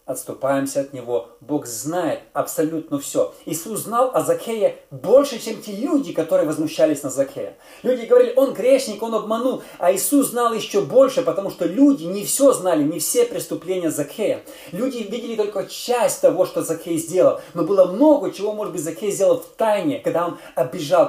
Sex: male